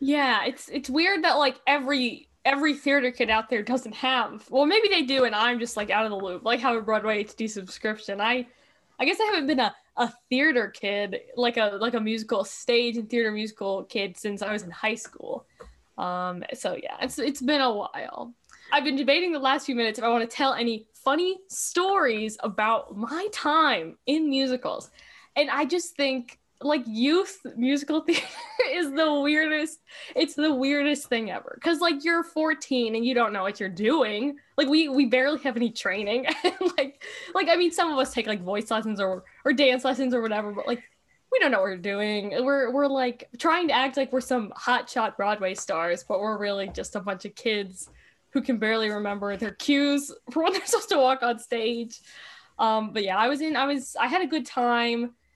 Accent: American